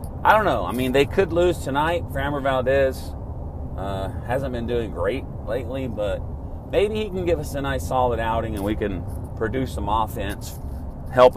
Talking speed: 180 wpm